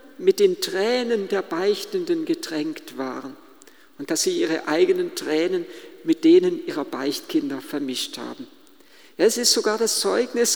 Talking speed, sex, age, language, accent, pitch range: 135 wpm, male, 50-69, German, German, 220-360 Hz